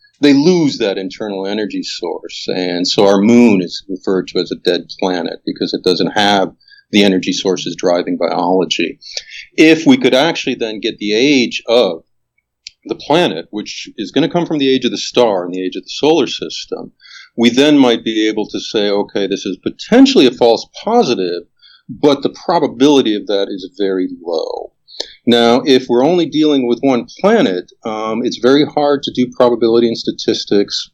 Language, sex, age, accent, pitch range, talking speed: English, male, 40-59, American, 100-140 Hz, 180 wpm